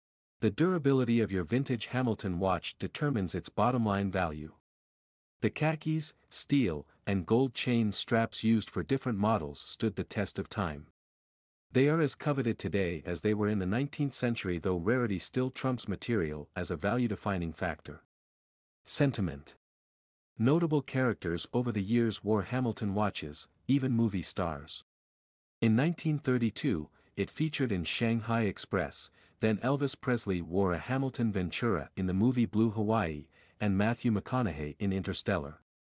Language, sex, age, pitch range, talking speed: English, male, 50-69, 90-125 Hz, 140 wpm